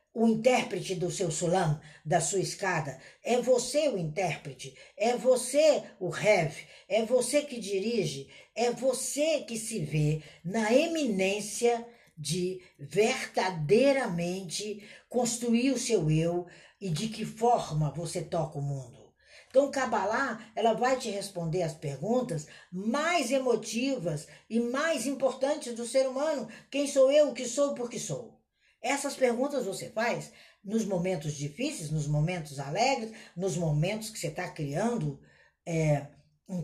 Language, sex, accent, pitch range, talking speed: Portuguese, female, Brazilian, 175-265 Hz, 135 wpm